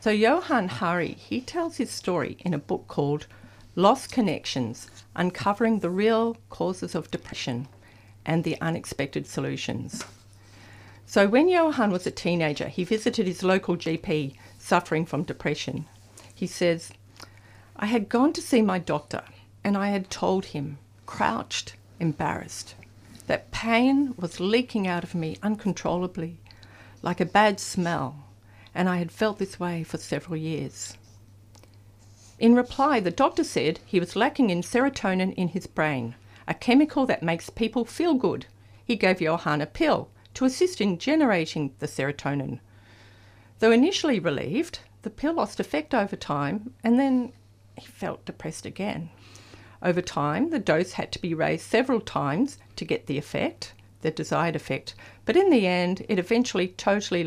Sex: female